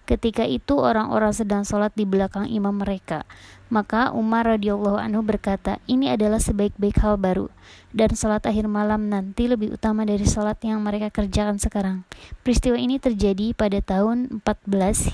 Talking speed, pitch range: 150 wpm, 195-220 Hz